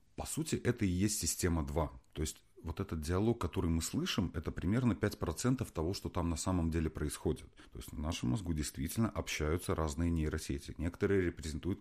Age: 30-49